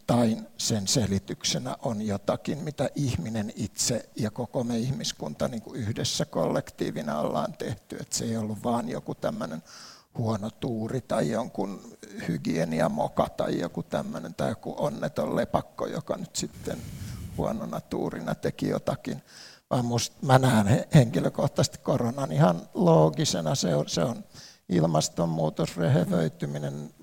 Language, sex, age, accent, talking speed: Finnish, male, 60-79, native, 125 wpm